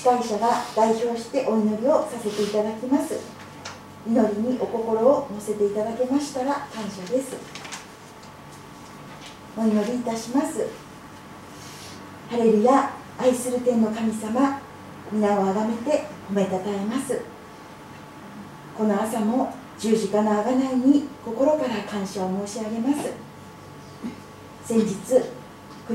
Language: Japanese